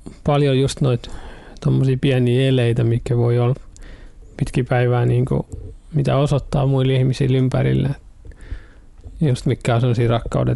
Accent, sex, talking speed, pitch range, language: native, male, 120 wpm, 120-140 Hz, Finnish